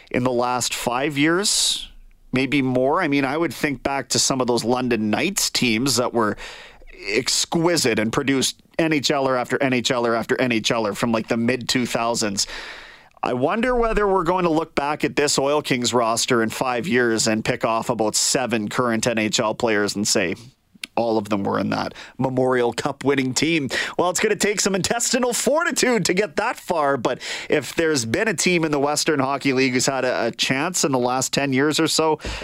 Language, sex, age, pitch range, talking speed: English, male, 30-49, 120-175 Hz, 190 wpm